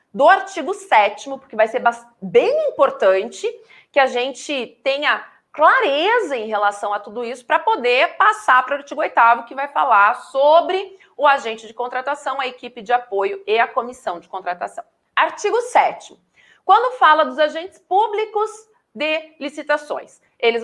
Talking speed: 150 wpm